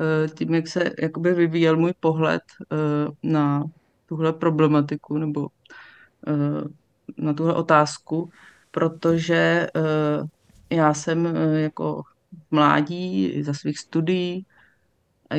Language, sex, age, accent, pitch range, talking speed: Czech, female, 30-49, native, 150-160 Hz, 105 wpm